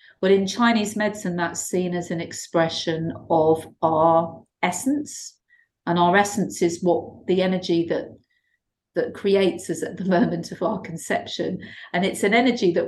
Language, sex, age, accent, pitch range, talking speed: English, female, 40-59, British, 170-205 Hz, 160 wpm